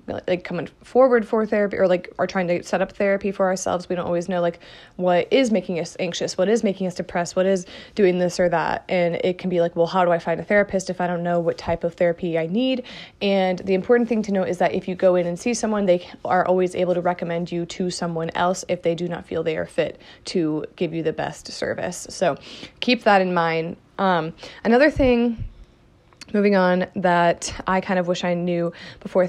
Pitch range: 175-195 Hz